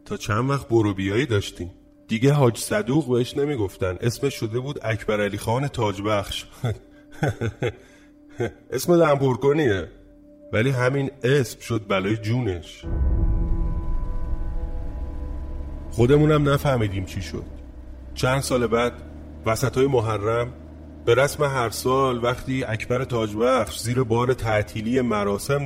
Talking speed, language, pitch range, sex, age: 110 wpm, Persian, 95-130 Hz, male, 30-49